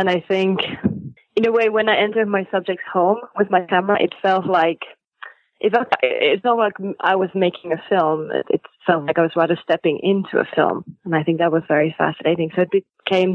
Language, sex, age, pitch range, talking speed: English, female, 20-39, 165-200 Hz, 210 wpm